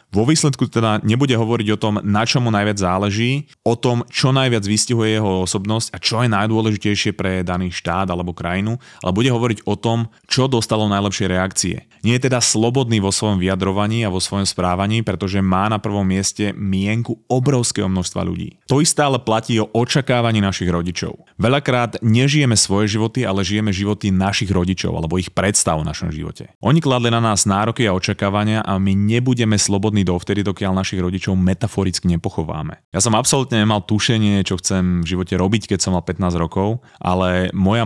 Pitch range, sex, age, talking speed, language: 95-115 Hz, male, 30-49, 180 wpm, Slovak